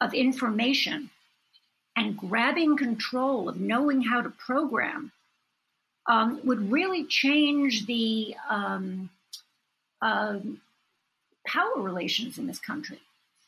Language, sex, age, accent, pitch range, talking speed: English, female, 50-69, American, 205-250 Hz, 100 wpm